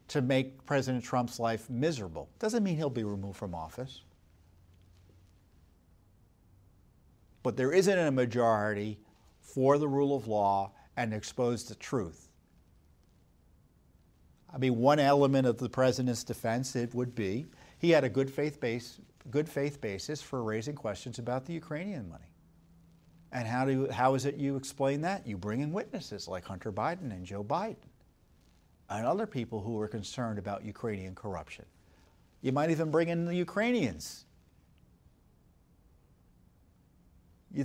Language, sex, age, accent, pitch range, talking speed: English, male, 50-69, American, 90-145 Hz, 145 wpm